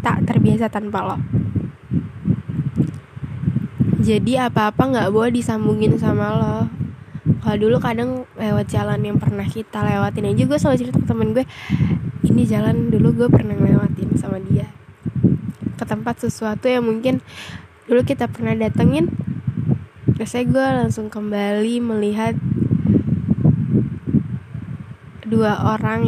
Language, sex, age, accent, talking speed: Indonesian, female, 10-29, native, 115 wpm